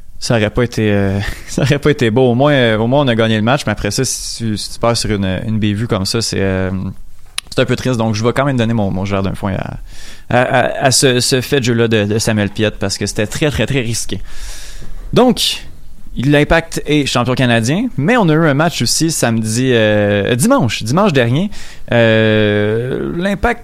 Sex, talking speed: male, 225 wpm